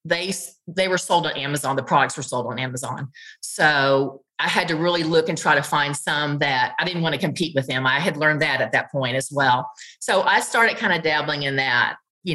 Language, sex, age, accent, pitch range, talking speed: English, female, 30-49, American, 160-215 Hz, 240 wpm